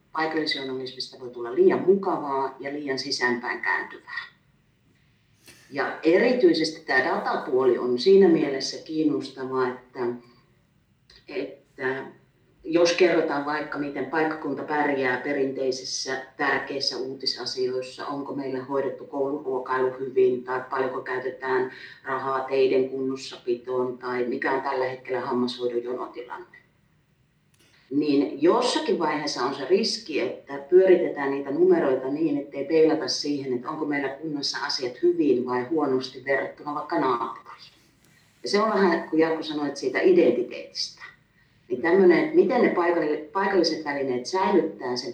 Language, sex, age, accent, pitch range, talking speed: Finnish, female, 40-59, native, 130-175 Hz, 120 wpm